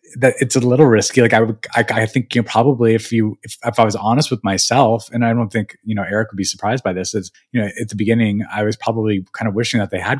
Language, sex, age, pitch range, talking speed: English, male, 20-39, 100-120 Hz, 280 wpm